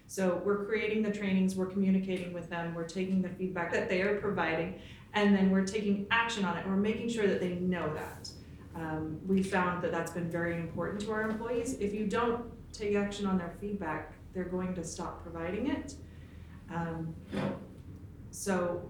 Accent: American